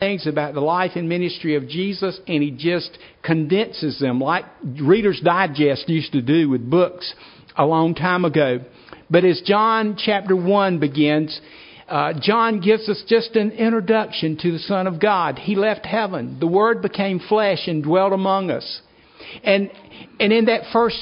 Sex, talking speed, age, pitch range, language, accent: male, 170 wpm, 60-79, 155-210 Hz, English, American